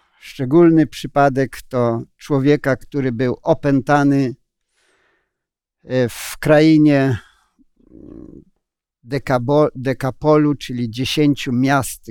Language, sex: Polish, male